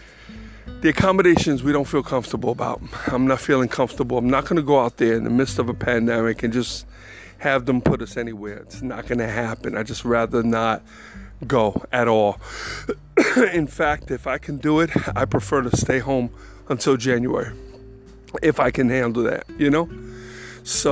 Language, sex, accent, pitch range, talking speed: English, male, American, 110-140 Hz, 185 wpm